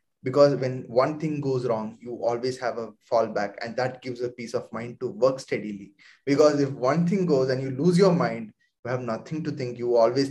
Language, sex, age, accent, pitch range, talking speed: English, male, 20-39, Indian, 125-170 Hz, 220 wpm